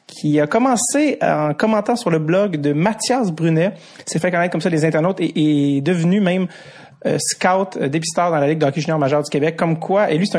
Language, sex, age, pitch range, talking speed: French, male, 30-49, 150-195 Hz, 235 wpm